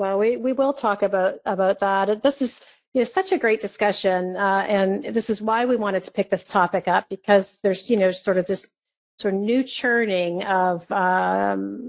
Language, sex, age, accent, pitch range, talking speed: English, female, 50-69, American, 185-215 Hz, 205 wpm